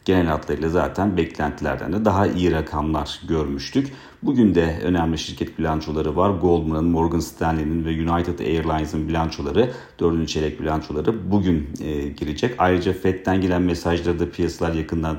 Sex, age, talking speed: male, 40-59, 140 wpm